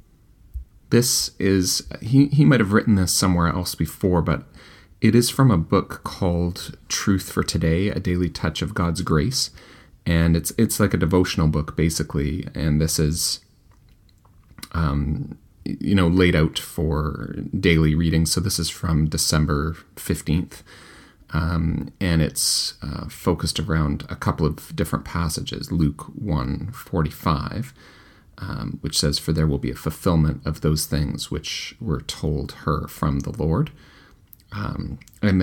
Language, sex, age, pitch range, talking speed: English, male, 30-49, 75-90 Hz, 145 wpm